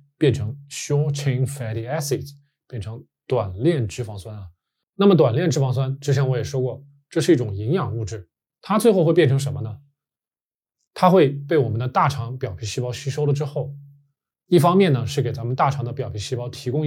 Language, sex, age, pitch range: Chinese, male, 20-39, 125-145 Hz